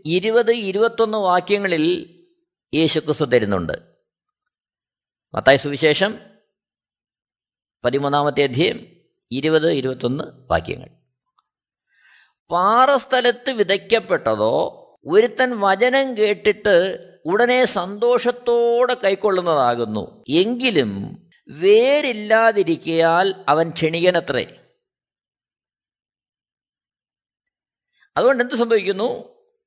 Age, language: 50-69, Malayalam